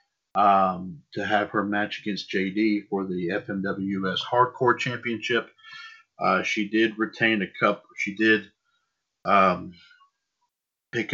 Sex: male